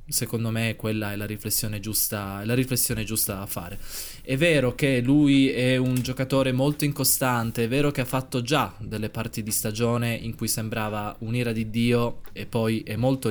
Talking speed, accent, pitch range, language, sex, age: 170 wpm, native, 110-130 Hz, Italian, male, 20-39